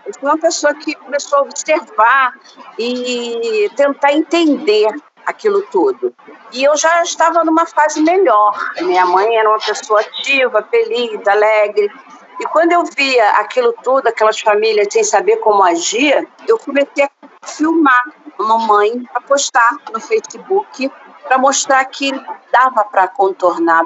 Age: 50-69